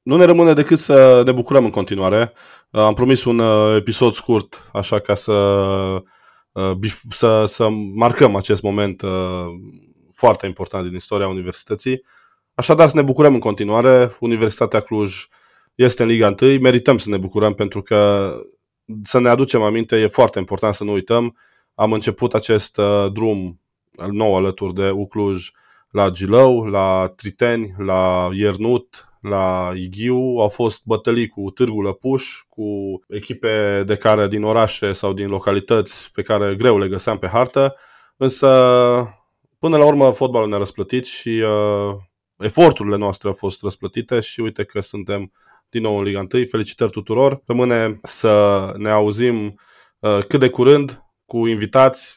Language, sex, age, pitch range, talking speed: Romanian, male, 20-39, 100-120 Hz, 145 wpm